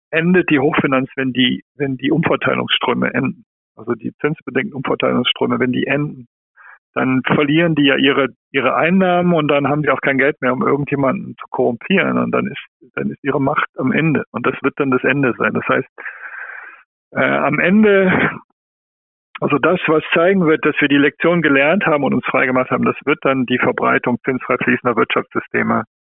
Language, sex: German, male